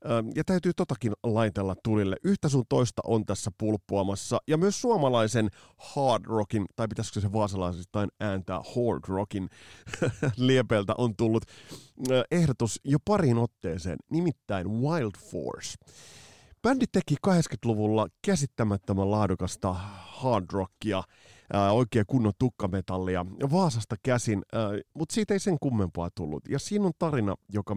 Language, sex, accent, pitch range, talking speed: Finnish, male, native, 100-140 Hz, 120 wpm